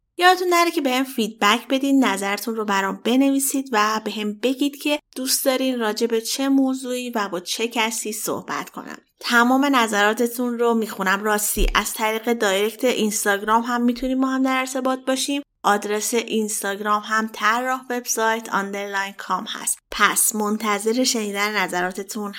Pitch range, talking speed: 210-260 Hz, 145 wpm